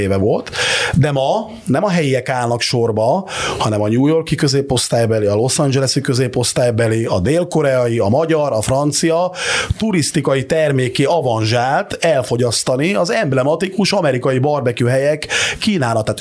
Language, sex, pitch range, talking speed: Hungarian, male, 120-155 Hz, 120 wpm